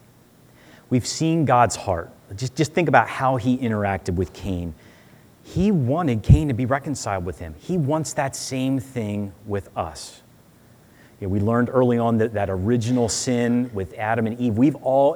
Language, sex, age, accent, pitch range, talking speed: English, male, 30-49, American, 95-125 Hz, 175 wpm